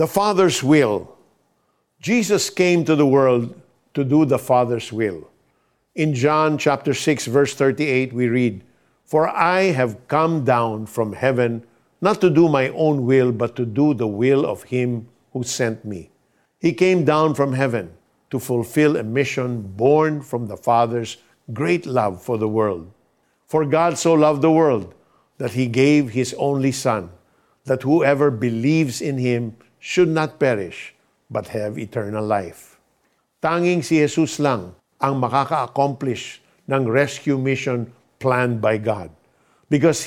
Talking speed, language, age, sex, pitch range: 150 wpm, Filipino, 50-69, male, 120-155 Hz